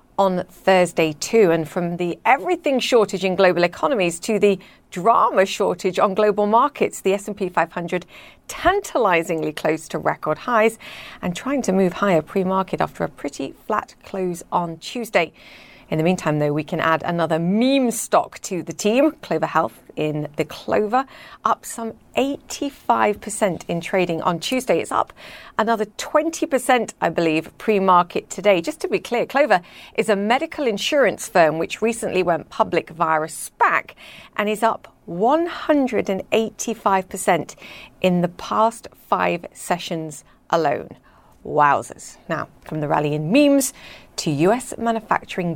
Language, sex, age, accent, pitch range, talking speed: English, female, 40-59, British, 170-230 Hz, 145 wpm